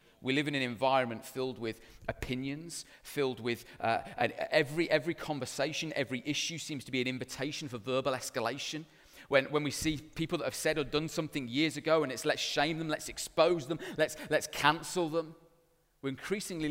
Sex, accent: male, British